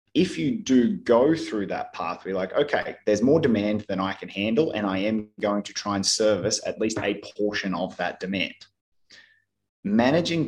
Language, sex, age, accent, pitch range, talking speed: English, male, 20-39, Australian, 100-120 Hz, 190 wpm